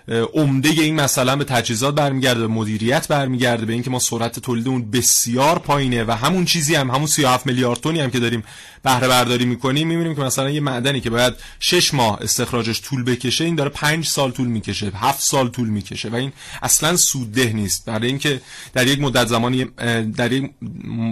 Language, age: Persian, 30-49